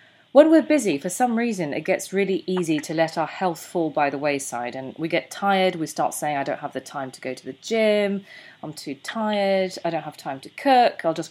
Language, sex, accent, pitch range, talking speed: English, female, British, 150-195 Hz, 245 wpm